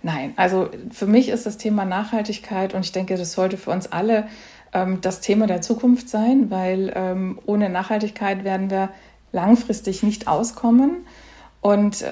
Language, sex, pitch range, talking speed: German, female, 195-235 Hz, 160 wpm